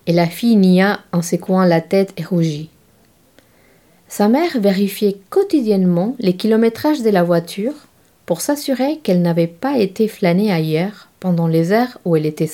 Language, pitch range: French, 165-200 Hz